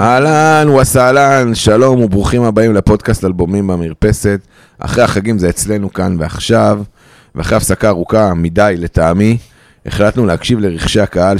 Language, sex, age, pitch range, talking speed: Hebrew, male, 30-49, 90-110 Hz, 120 wpm